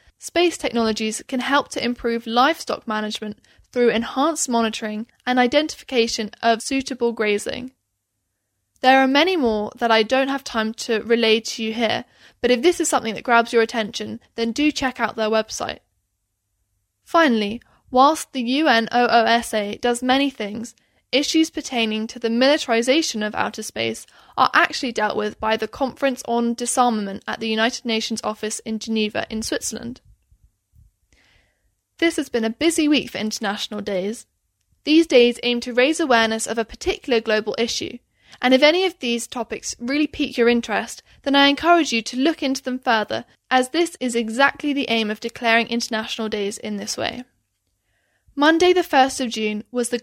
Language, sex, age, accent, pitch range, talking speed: English, female, 10-29, British, 220-265 Hz, 165 wpm